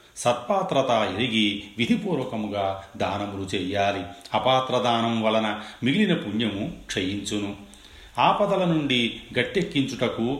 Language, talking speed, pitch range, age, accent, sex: Telugu, 80 wpm, 100-135 Hz, 40-59, native, male